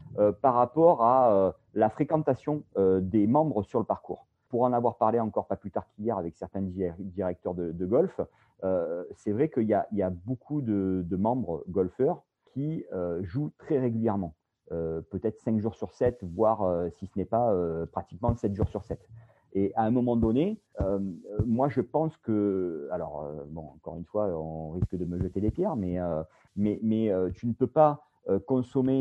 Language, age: French, 40-59